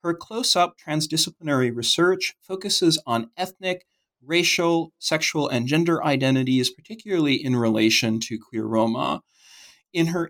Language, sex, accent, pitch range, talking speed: English, male, American, 120-170 Hz, 115 wpm